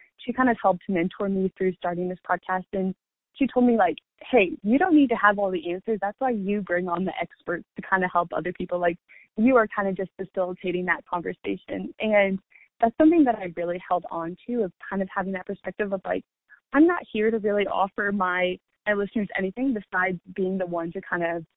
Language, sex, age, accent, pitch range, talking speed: English, female, 20-39, American, 185-220 Hz, 225 wpm